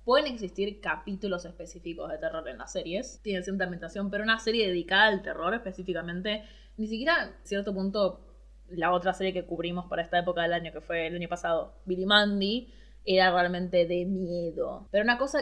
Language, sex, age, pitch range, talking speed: Spanish, female, 20-39, 175-220 Hz, 185 wpm